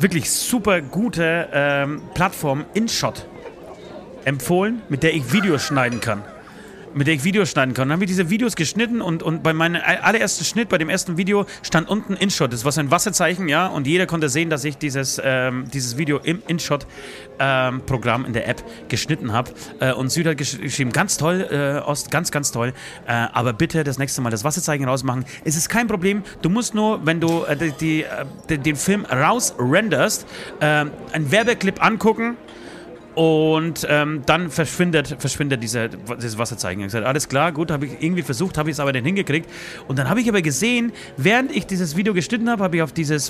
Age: 30-49